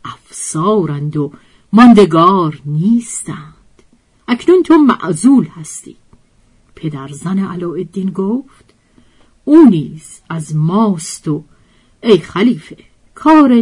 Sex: female